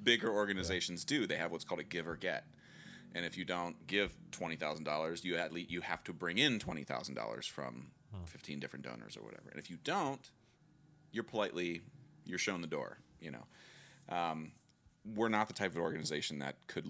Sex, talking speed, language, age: male, 200 wpm, English, 30-49